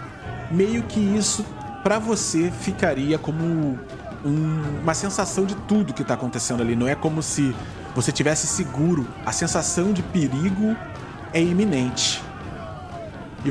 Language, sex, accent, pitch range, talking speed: Portuguese, male, Brazilian, 125-175 Hz, 130 wpm